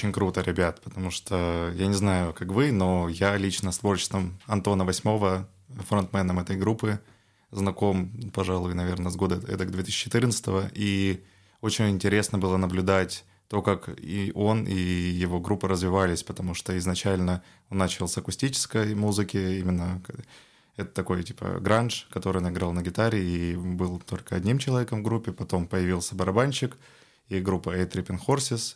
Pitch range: 90-105 Hz